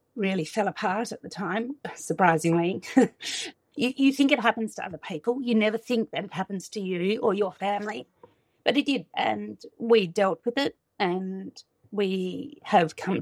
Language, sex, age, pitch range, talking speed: English, female, 40-59, 180-225 Hz, 170 wpm